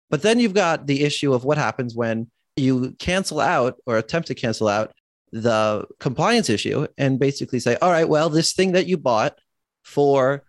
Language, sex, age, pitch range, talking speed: English, male, 30-49, 120-150 Hz, 190 wpm